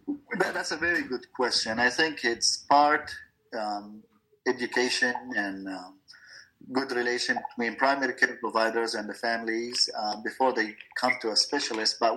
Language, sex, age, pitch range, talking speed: English, male, 30-49, 110-140 Hz, 150 wpm